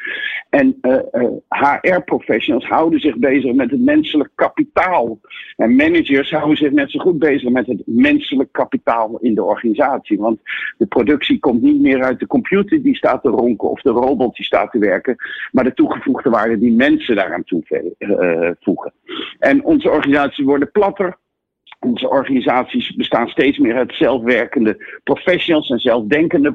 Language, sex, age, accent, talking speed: Dutch, male, 50-69, Dutch, 155 wpm